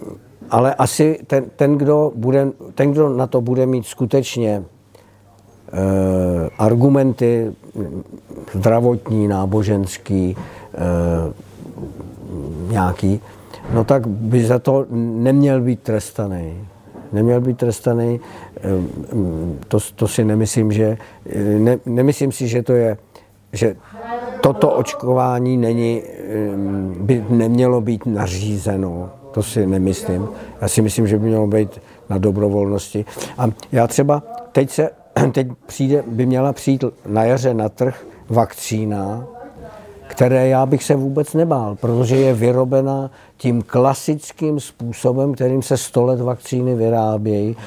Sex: male